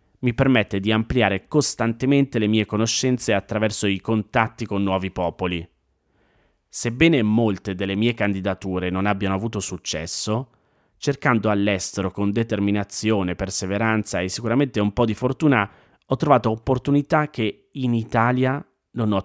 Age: 30-49